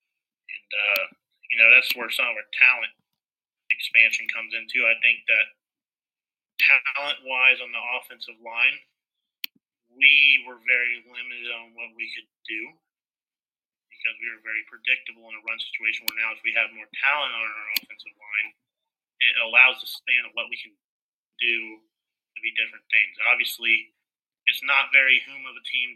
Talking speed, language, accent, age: 160 wpm, English, American, 30-49